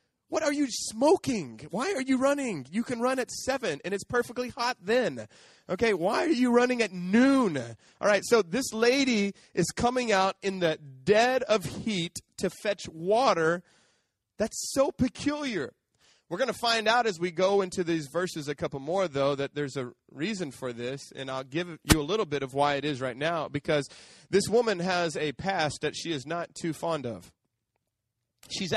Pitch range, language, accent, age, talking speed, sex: 130-200 Hz, English, American, 30-49, 190 wpm, male